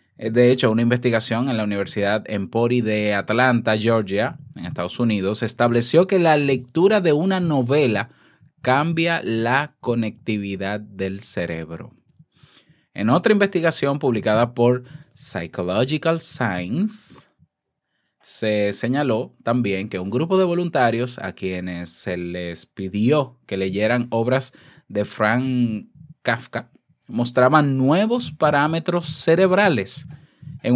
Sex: male